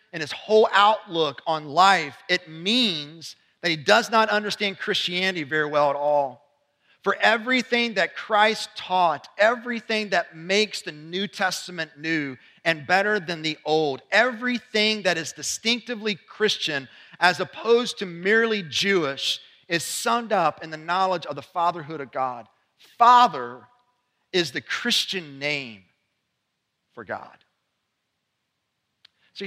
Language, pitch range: English, 155-205 Hz